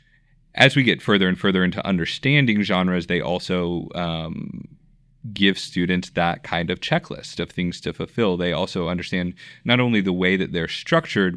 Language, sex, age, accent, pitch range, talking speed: English, male, 20-39, American, 85-100 Hz, 170 wpm